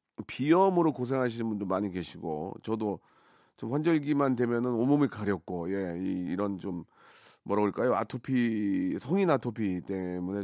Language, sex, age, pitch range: Korean, male, 40-59, 110-150 Hz